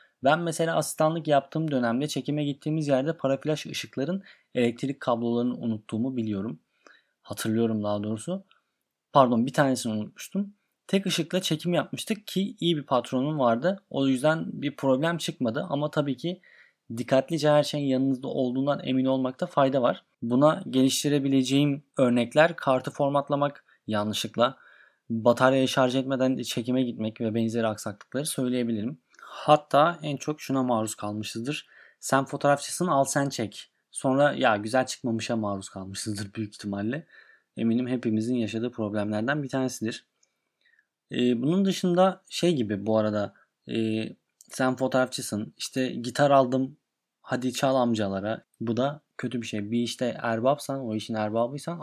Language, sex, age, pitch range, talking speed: Turkish, male, 30-49, 115-150 Hz, 130 wpm